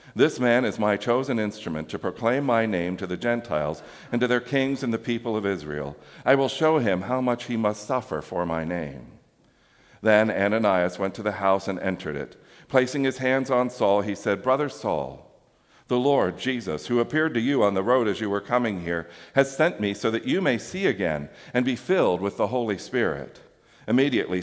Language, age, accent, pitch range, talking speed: English, 50-69, American, 100-130 Hz, 205 wpm